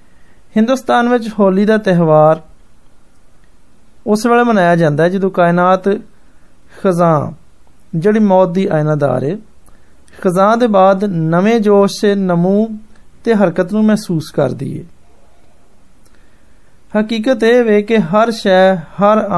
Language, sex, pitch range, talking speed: Hindi, male, 160-205 Hz, 35 wpm